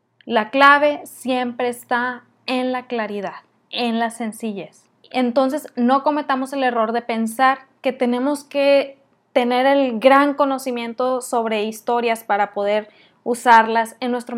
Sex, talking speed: female, 130 wpm